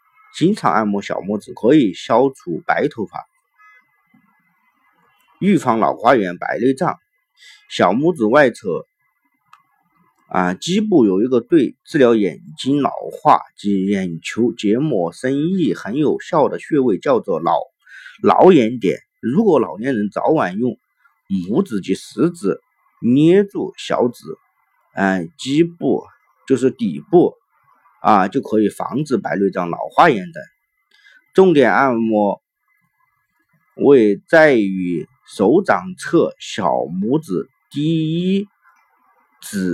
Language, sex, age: Chinese, male, 50-69